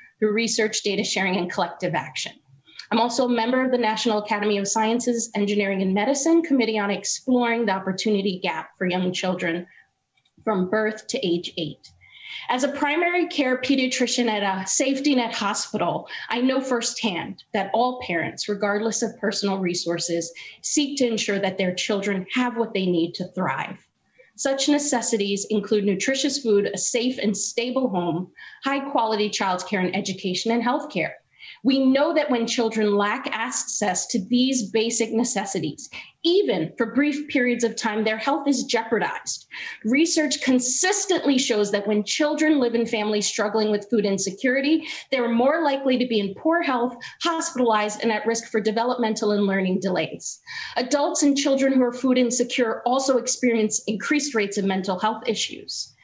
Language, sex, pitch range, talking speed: English, female, 205-260 Hz, 160 wpm